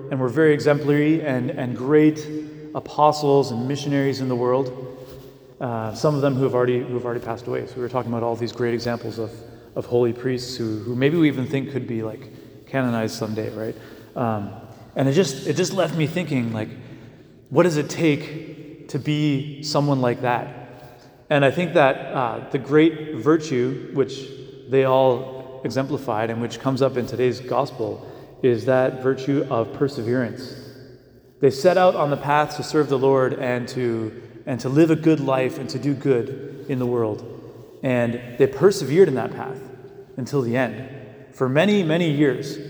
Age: 30-49